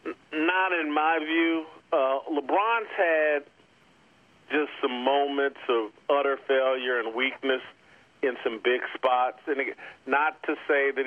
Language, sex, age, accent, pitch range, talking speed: English, male, 40-59, American, 115-135 Hz, 135 wpm